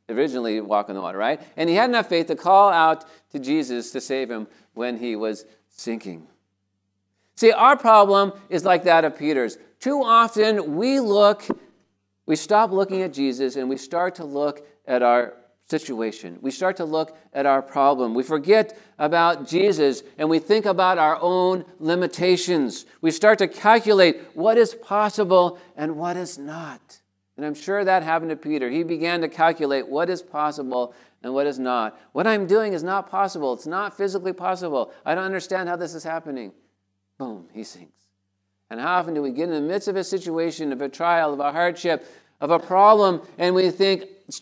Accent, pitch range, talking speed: American, 115-190 Hz, 190 wpm